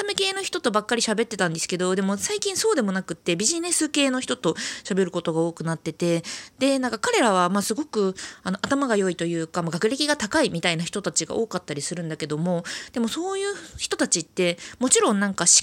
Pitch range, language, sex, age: 170-265 Hz, Japanese, female, 20-39